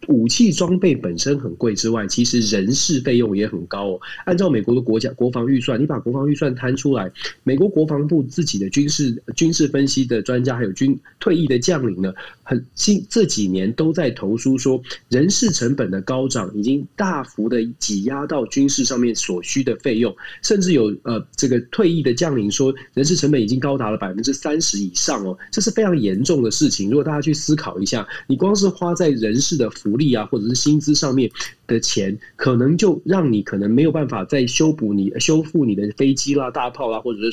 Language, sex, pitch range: Chinese, male, 110-155 Hz